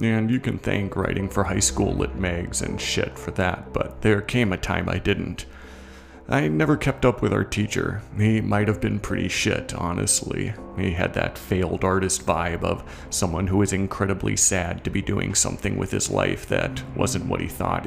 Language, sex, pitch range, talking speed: English, male, 90-110 Hz, 200 wpm